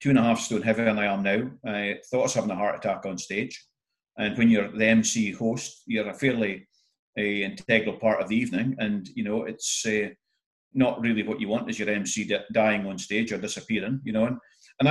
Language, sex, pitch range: English, male, 105-130 Hz